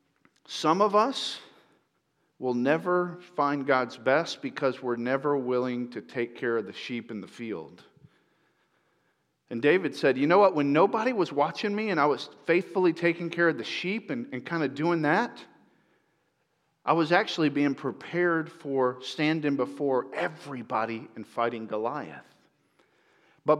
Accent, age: American, 50-69